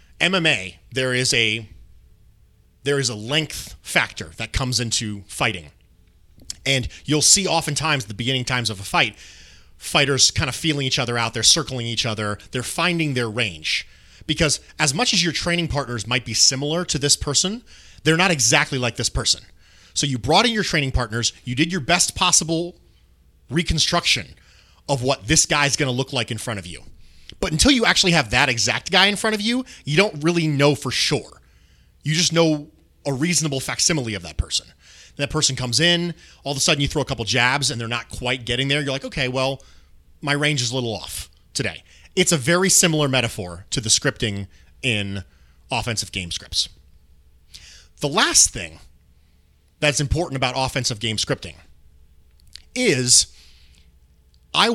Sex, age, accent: male, 30-49, American